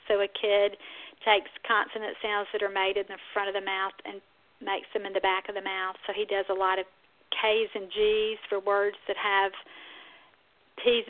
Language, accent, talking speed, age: English, American, 205 wpm, 50-69